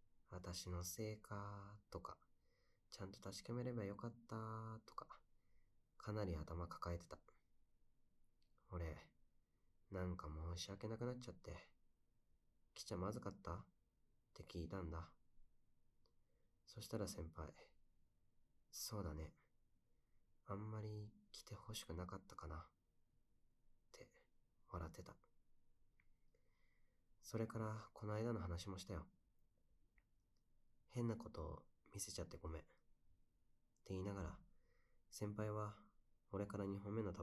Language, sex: Japanese, male